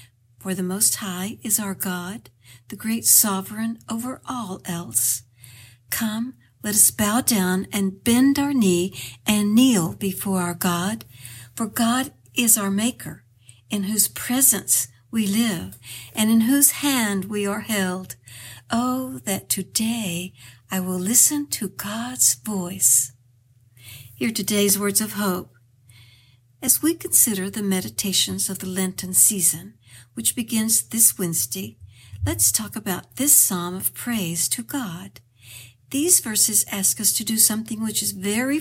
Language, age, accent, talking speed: English, 60-79, American, 140 wpm